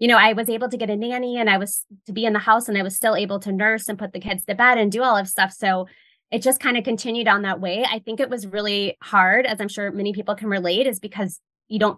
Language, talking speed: English, 305 wpm